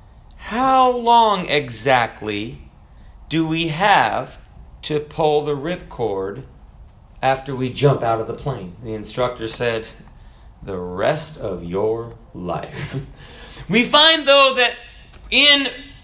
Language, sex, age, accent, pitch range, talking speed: English, male, 40-59, American, 130-205 Hz, 110 wpm